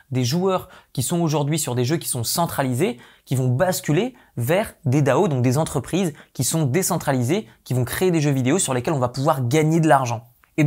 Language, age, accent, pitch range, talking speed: French, 20-39, French, 130-165 Hz, 215 wpm